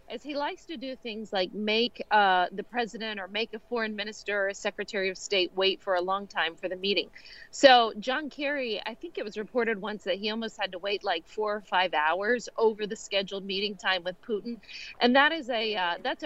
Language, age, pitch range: English, 40-59, 195-235 Hz